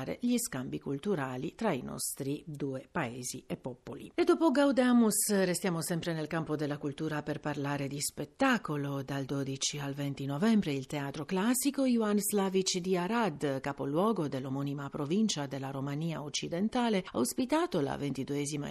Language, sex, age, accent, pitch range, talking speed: Italian, female, 50-69, native, 145-185 Hz, 140 wpm